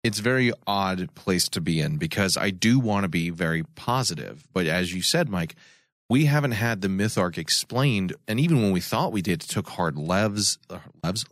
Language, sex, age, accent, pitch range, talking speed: English, male, 30-49, American, 95-135 Hz, 210 wpm